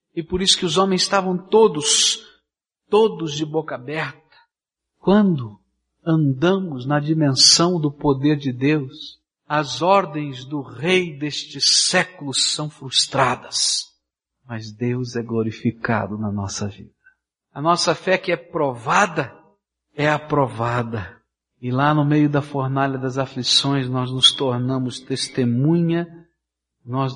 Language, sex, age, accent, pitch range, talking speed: Portuguese, male, 60-79, Brazilian, 135-185 Hz, 125 wpm